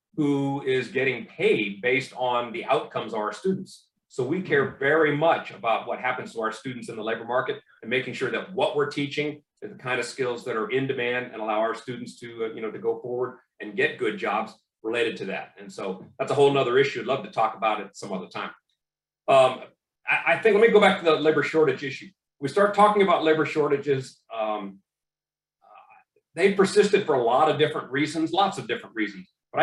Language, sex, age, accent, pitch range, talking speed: English, male, 40-59, American, 120-155 Hz, 215 wpm